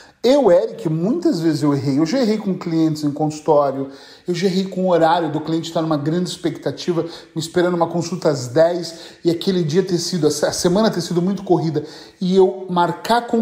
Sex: male